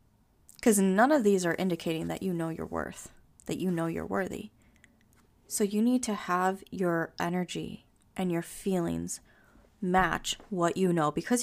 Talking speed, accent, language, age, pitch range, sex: 165 wpm, American, English, 20-39, 165-220 Hz, female